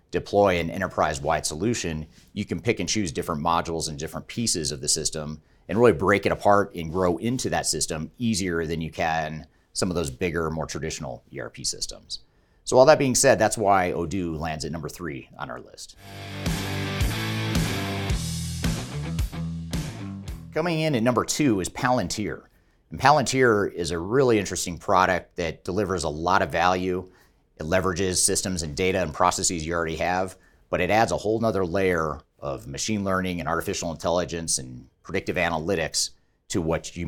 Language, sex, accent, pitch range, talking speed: English, male, American, 80-100 Hz, 165 wpm